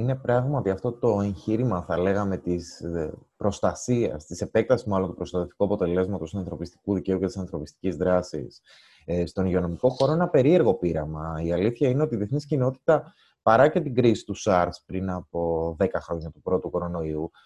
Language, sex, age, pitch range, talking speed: Greek, male, 20-39, 95-155 Hz, 165 wpm